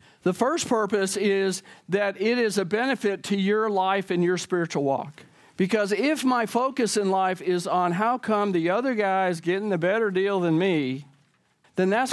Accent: American